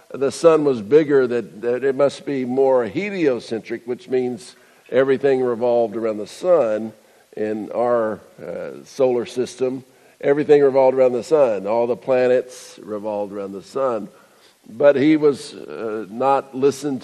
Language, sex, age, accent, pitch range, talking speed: English, male, 50-69, American, 120-155 Hz, 145 wpm